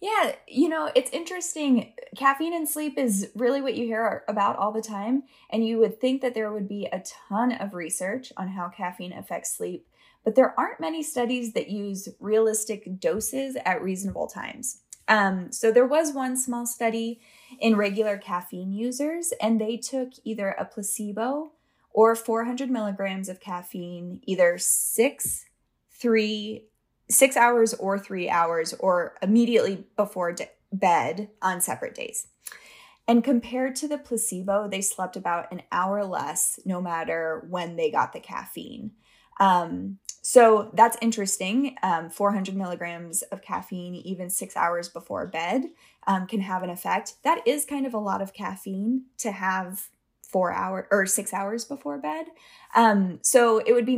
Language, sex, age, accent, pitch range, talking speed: English, female, 10-29, American, 190-255 Hz, 160 wpm